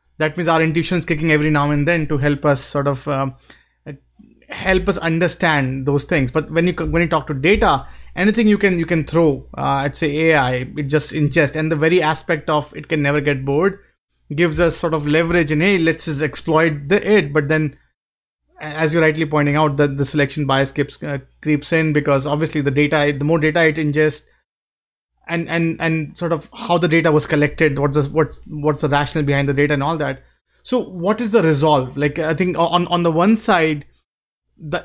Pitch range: 140-165 Hz